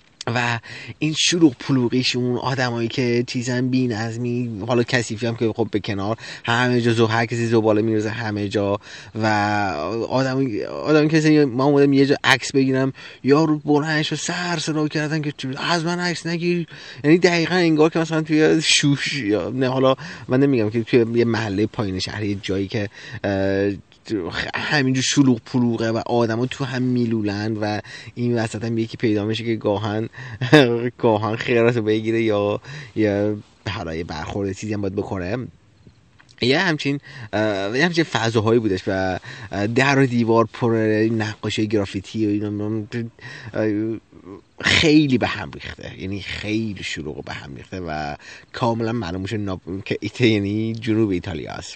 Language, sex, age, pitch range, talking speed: Persian, male, 30-49, 105-135 Hz, 150 wpm